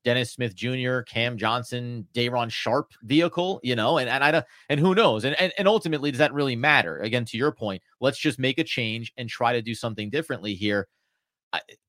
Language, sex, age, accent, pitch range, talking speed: English, male, 30-49, American, 120-155 Hz, 210 wpm